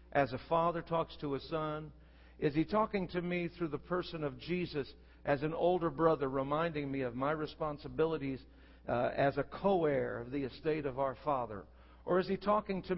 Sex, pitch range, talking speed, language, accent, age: male, 150-210 Hz, 195 wpm, English, American, 60-79